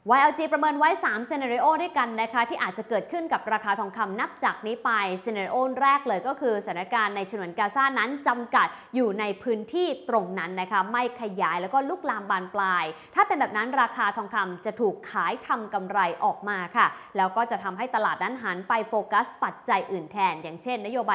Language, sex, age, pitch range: English, female, 20-39, 200-260 Hz